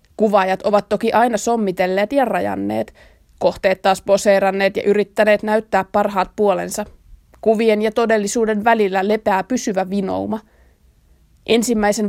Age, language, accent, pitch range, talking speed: 20-39, Finnish, native, 190-215 Hz, 115 wpm